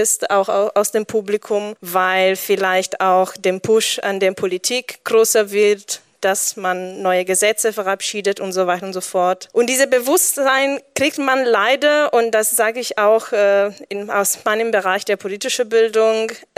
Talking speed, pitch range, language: 160 wpm, 200-230 Hz, German